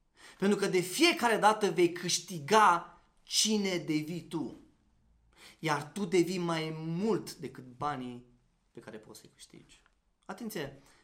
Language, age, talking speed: Romanian, 30-49, 125 wpm